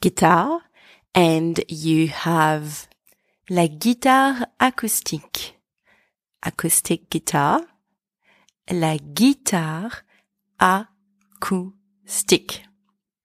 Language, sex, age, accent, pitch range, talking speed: English, female, 30-49, French, 170-240 Hz, 55 wpm